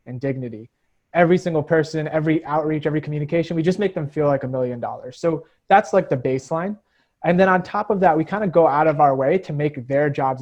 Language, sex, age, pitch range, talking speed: English, male, 30-49, 140-175 Hz, 235 wpm